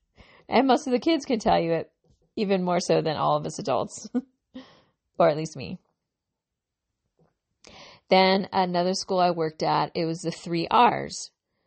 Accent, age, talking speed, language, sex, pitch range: American, 40-59, 165 wpm, English, female, 165-215 Hz